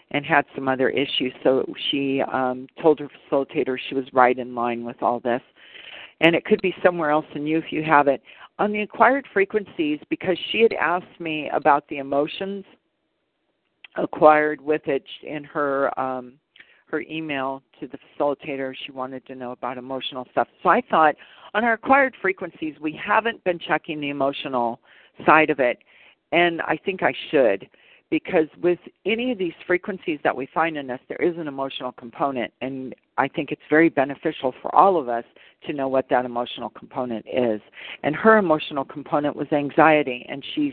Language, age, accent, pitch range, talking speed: English, 50-69, American, 130-165 Hz, 180 wpm